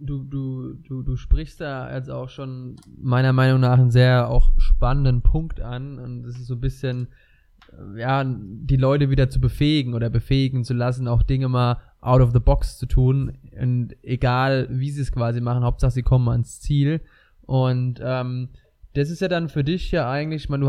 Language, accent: German, German